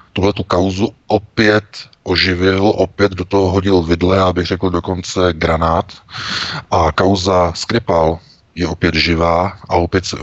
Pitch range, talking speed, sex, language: 85-100 Hz, 130 wpm, male, Czech